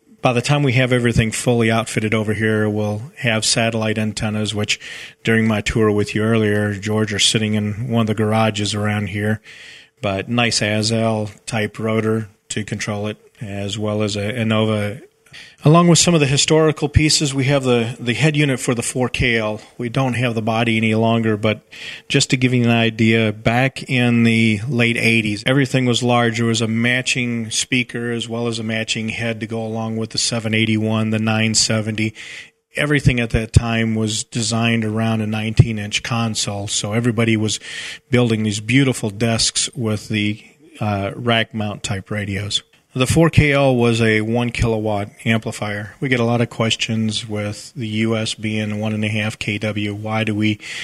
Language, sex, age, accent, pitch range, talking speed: English, male, 40-59, American, 110-120 Hz, 170 wpm